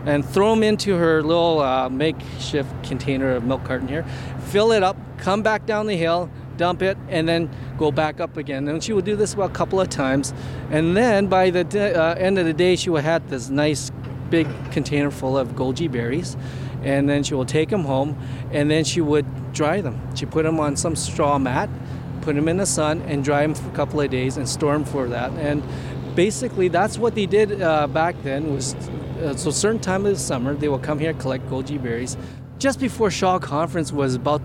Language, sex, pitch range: English, male, 135-180 Hz